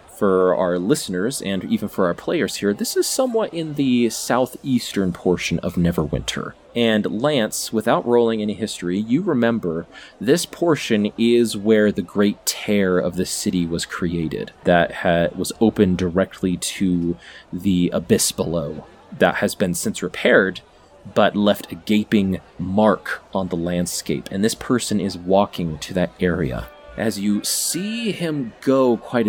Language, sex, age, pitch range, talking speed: English, male, 20-39, 95-125 Hz, 150 wpm